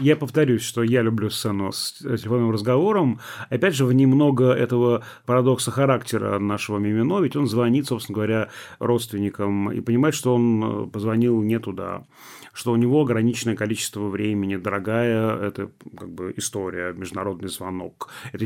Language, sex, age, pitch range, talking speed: Russian, male, 30-49, 105-125 Hz, 145 wpm